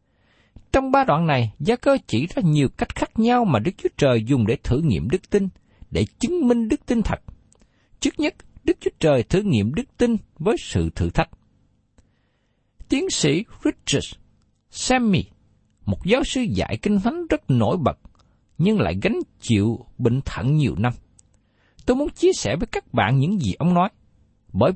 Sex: male